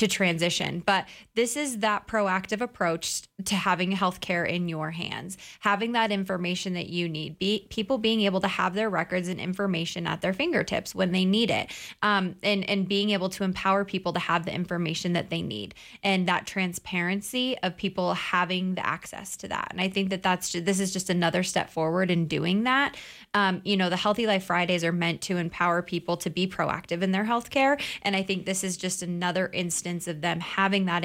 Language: English